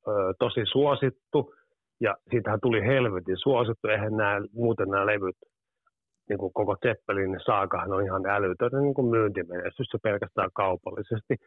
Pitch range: 100-130 Hz